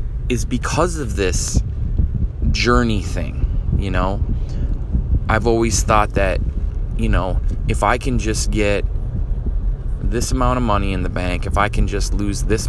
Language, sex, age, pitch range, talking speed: English, male, 20-39, 70-110 Hz, 150 wpm